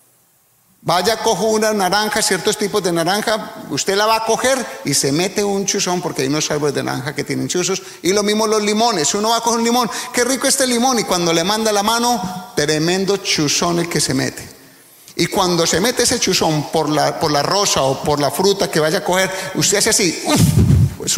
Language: English